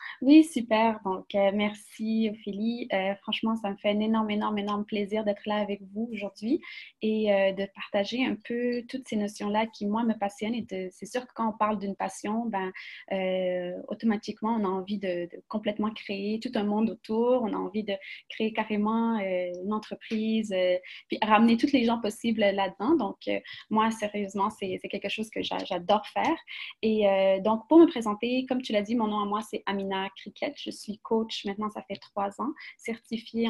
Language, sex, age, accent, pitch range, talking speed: French, female, 20-39, Canadian, 200-230 Hz, 205 wpm